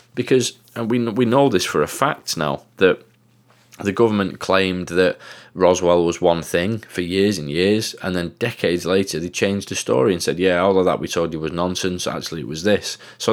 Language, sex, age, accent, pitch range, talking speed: English, male, 20-39, British, 85-100 Hz, 210 wpm